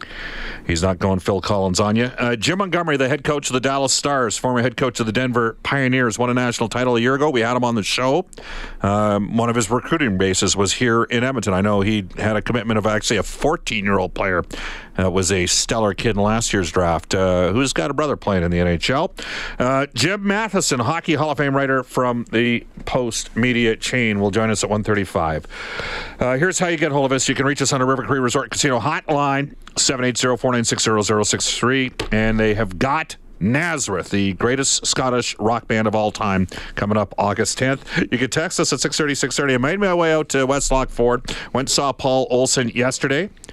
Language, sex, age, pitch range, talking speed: English, male, 50-69, 105-135 Hz, 205 wpm